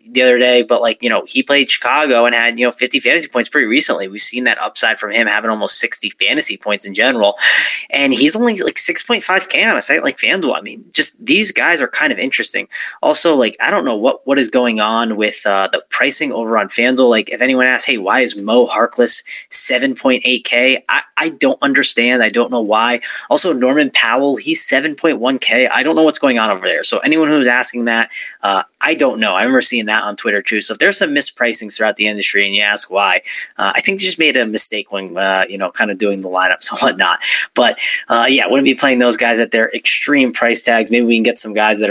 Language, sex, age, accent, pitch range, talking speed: English, male, 20-39, American, 105-130 Hz, 240 wpm